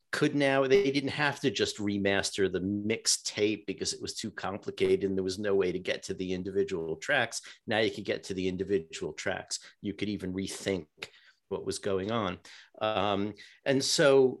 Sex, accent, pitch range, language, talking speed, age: male, American, 100-140 Hz, English, 190 wpm, 50-69